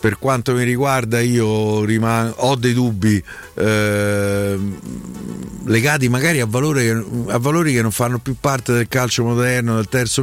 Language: Italian